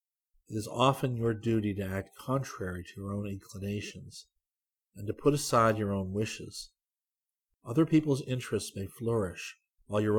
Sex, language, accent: male, English, American